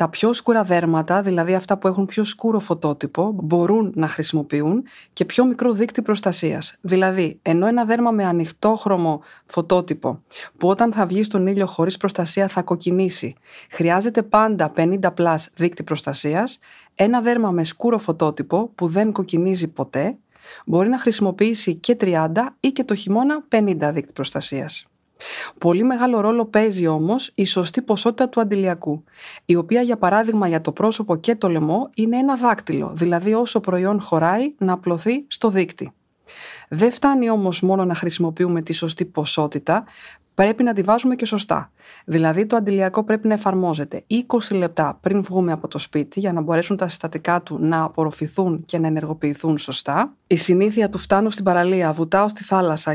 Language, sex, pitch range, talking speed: Greek, female, 165-225 Hz, 160 wpm